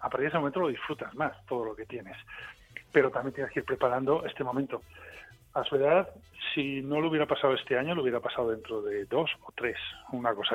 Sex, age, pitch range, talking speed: male, 40-59, 125-155 Hz, 230 wpm